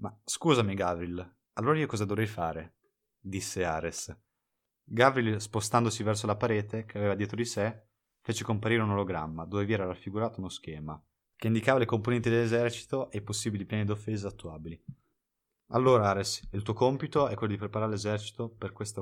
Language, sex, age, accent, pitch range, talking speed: Italian, male, 20-39, native, 95-115 Hz, 165 wpm